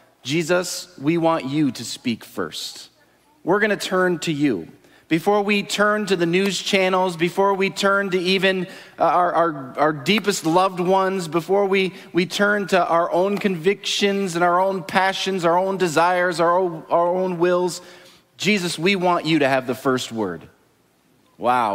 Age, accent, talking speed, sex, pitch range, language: 30-49, American, 165 wpm, male, 160-195 Hz, English